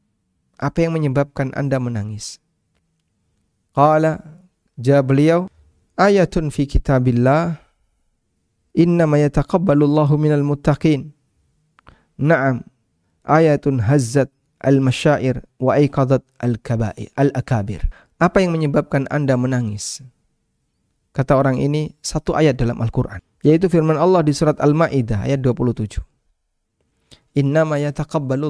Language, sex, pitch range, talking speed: Indonesian, male, 125-150 Hz, 90 wpm